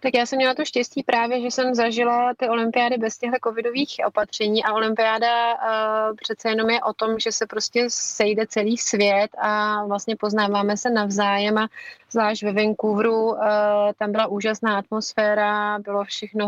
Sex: female